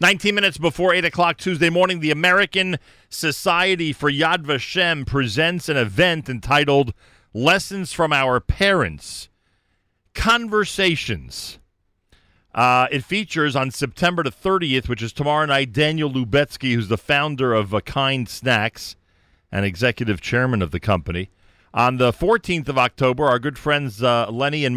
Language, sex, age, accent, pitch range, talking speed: English, male, 40-59, American, 95-140 Hz, 145 wpm